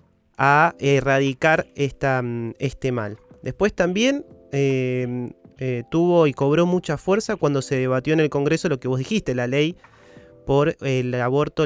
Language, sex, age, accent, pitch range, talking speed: Spanish, male, 30-49, Argentinian, 130-165 Hz, 145 wpm